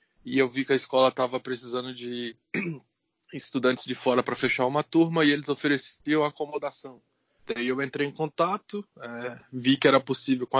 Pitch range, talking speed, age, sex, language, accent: 125-140 Hz, 180 wpm, 20-39, male, Portuguese, Brazilian